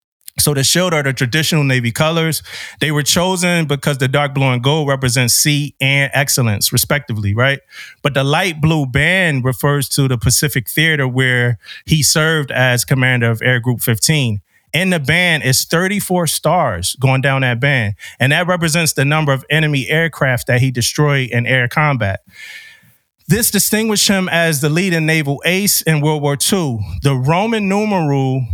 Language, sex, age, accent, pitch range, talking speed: English, male, 30-49, American, 130-155 Hz, 170 wpm